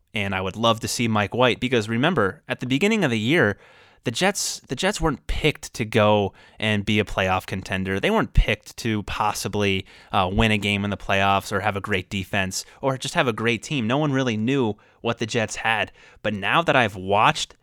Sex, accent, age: male, American, 20-39